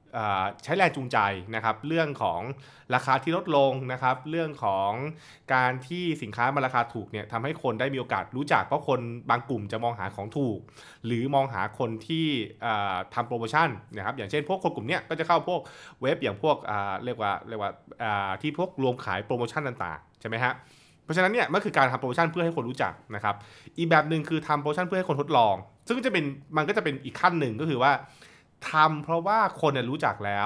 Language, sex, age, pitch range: Thai, male, 20-39, 120-160 Hz